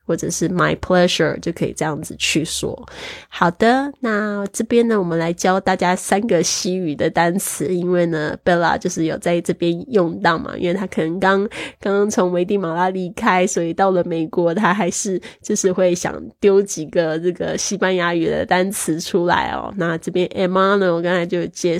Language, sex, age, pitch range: Chinese, female, 20-39, 170-200 Hz